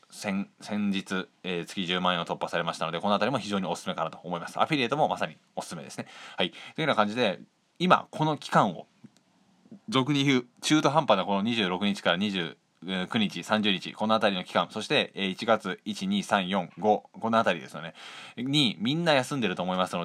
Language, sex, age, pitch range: Japanese, male, 20-39, 90-115 Hz